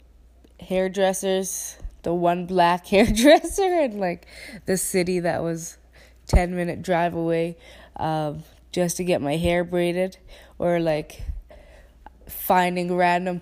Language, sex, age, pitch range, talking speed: English, female, 20-39, 175-200 Hz, 110 wpm